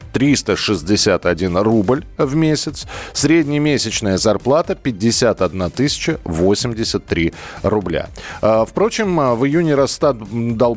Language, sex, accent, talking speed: Russian, male, native, 80 wpm